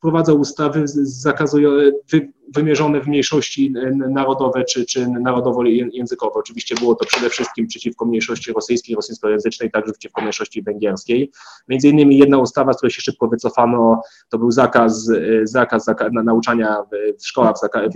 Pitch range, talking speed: 110-135 Hz, 155 wpm